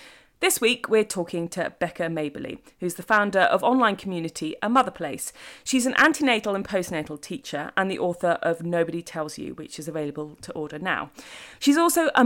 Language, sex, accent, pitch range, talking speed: English, female, British, 165-230 Hz, 185 wpm